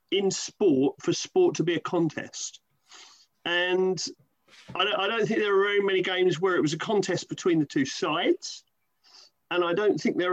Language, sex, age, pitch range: English, male, 40-59, 155-200 Hz